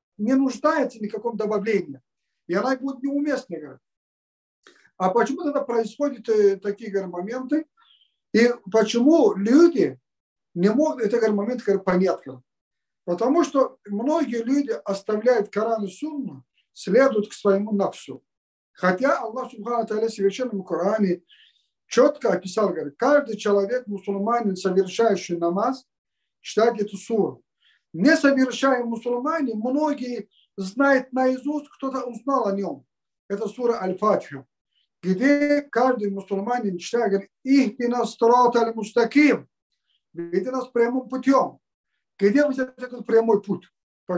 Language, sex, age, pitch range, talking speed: Russian, male, 50-69, 200-265 Hz, 115 wpm